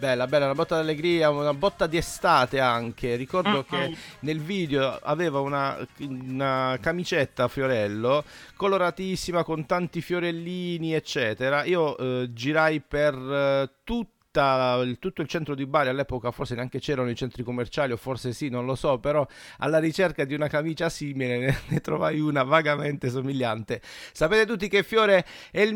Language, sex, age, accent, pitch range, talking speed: Italian, male, 40-59, native, 145-200 Hz, 160 wpm